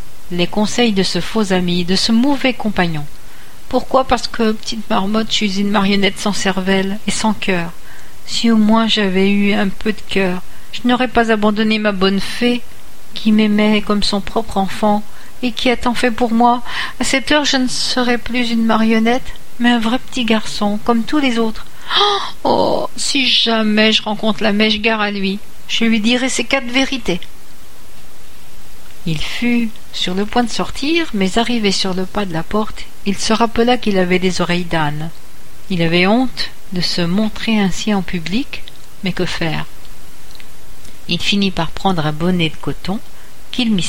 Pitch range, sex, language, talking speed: 180-235 Hz, female, French, 180 wpm